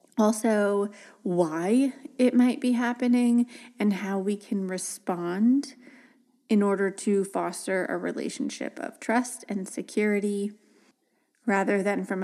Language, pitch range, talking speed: English, 195-260 Hz, 120 wpm